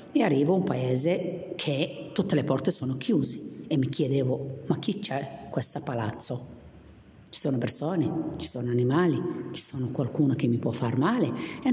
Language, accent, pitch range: Italian, native, 135-165 Hz